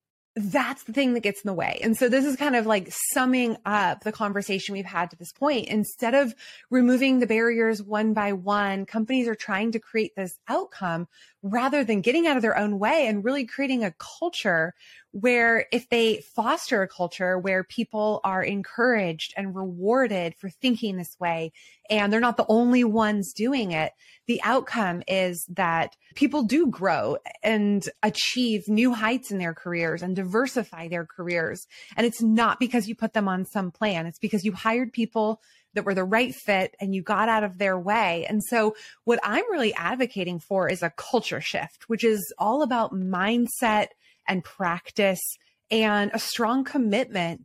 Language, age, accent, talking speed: English, 20-39, American, 180 wpm